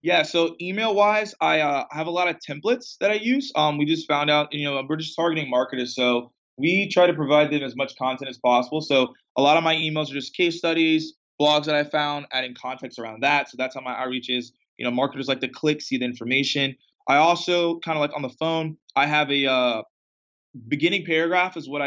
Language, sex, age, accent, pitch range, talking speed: English, male, 20-39, American, 125-150 Hz, 230 wpm